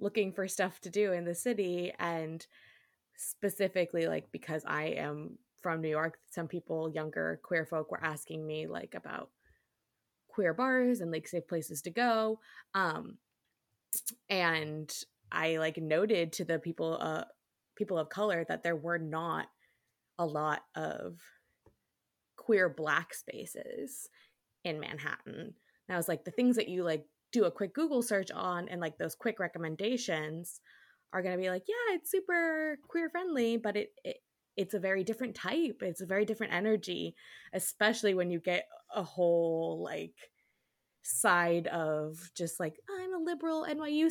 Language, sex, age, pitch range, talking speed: English, female, 20-39, 165-235 Hz, 160 wpm